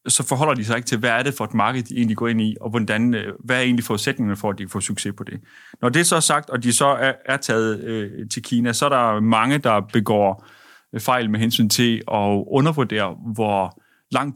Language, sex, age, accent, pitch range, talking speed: Danish, male, 30-49, native, 110-135 Hz, 230 wpm